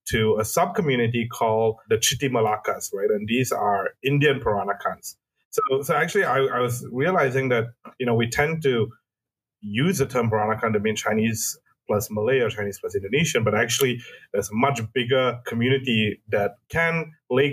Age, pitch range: 30-49, 115-140 Hz